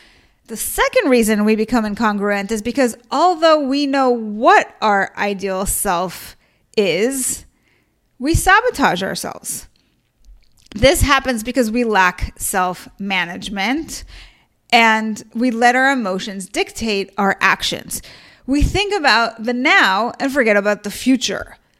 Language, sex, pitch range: English, female, 210-275 Hz